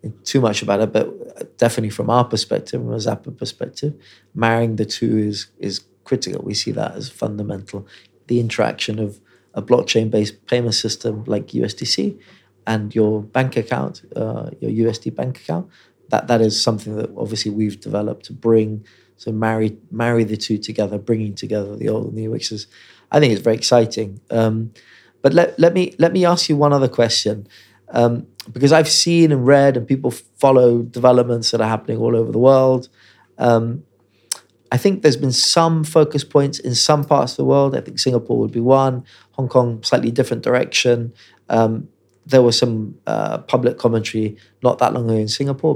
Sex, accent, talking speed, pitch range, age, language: male, British, 180 wpm, 110-135 Hz, 30-49, English